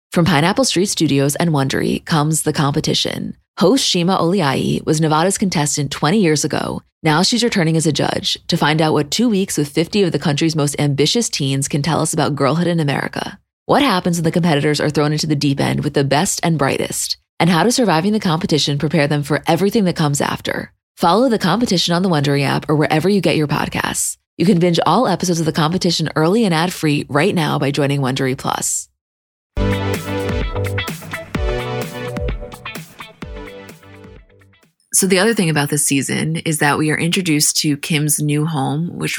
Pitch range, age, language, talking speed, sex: 145-175 Hz, 20-39, English, 185 wpm, female